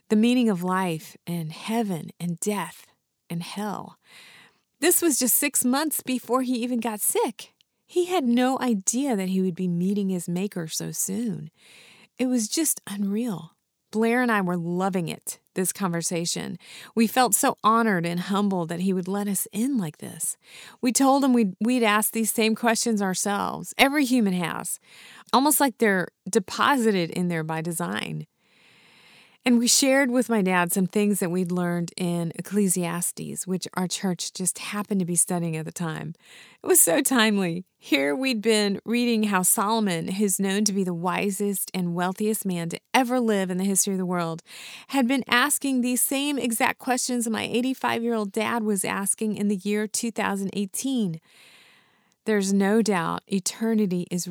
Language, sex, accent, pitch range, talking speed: English, female, American, 180-235 Hz, 170 wpm